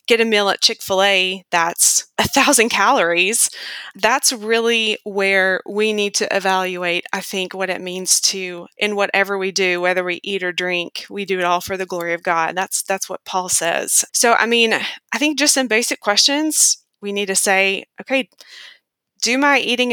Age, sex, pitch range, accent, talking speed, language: 20-39, female, 195-240 Hz, American, 185 wpm, English